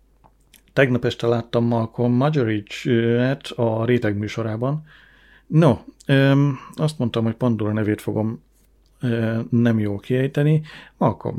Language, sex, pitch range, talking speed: Hungarian, male, 110-125 Hz, 100 wpm